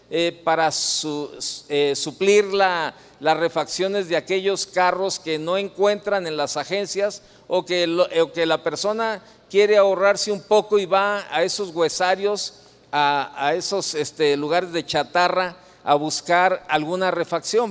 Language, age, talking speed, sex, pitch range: Spanish, 50-69, 155 wpm, male, 160-205 Hz